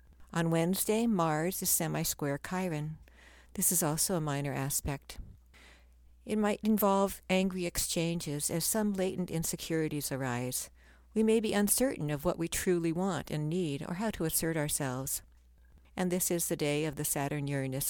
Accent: American